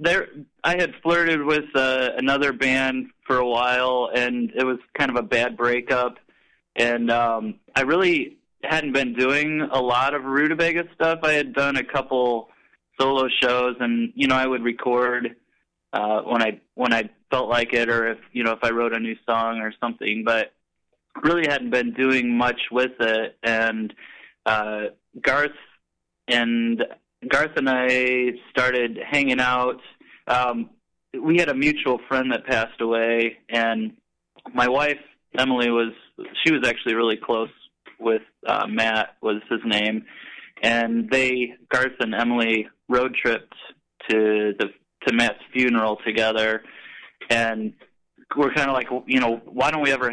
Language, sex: English, male